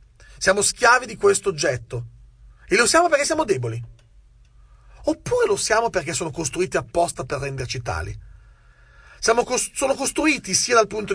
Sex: male